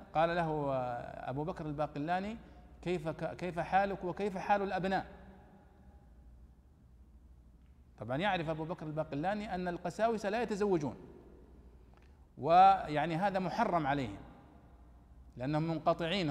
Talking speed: 95 wpm